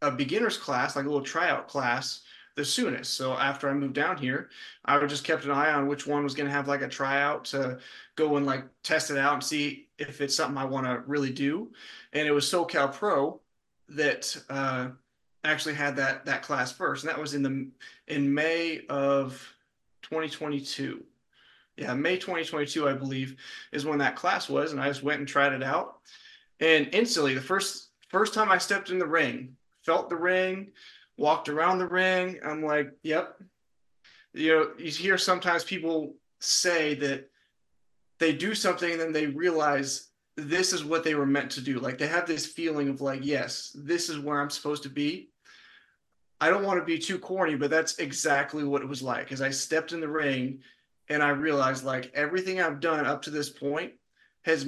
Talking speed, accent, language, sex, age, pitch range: 195 wpm, American, English, male, 20-39, 140-165 Hz